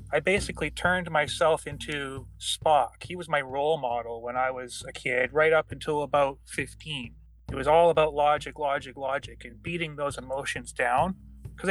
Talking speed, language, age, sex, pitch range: 175 wpm, English, 30-49, male, 130-170 Hz